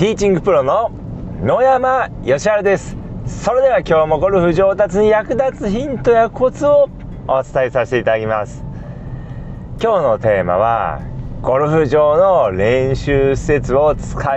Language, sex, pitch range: Japanese, male, 105-150 Hz